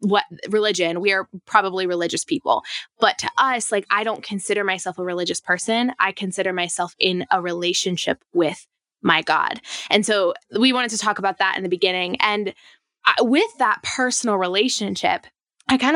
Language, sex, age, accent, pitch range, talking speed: English, female, 10-29, American, 190-230 Hz, 170 wpm